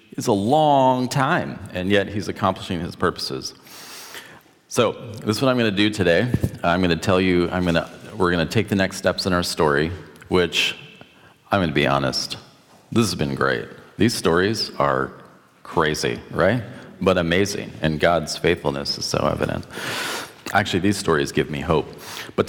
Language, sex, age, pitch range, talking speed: English, male, 40-59, 85-115 Hz, 165 wpm